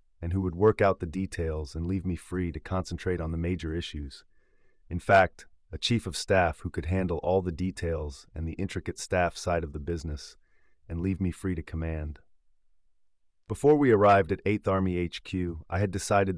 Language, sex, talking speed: English, male, 195 wpm